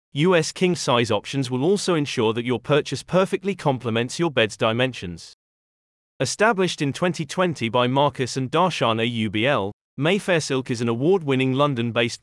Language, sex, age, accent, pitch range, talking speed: English, male, 30-49, British, 120-165 Hz, 135 wpm